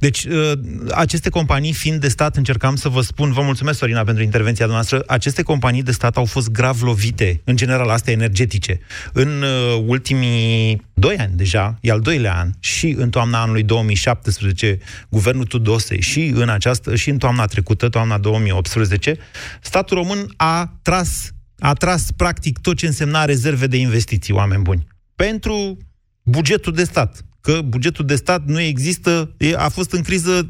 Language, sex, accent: Romanian, male, native